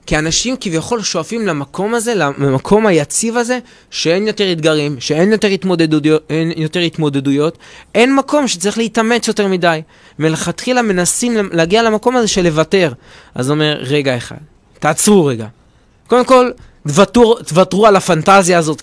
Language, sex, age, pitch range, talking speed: Hebrew, male, 20-39, 150-200 Hz, 145 wpm